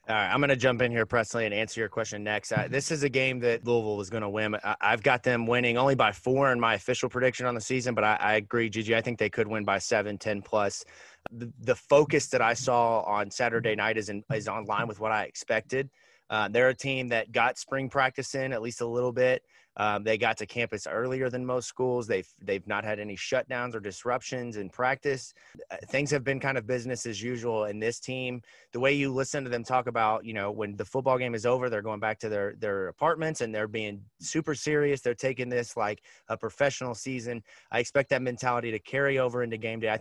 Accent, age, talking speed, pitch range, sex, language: American, 30-49, 240 wpm, 110-130 Hz, male, English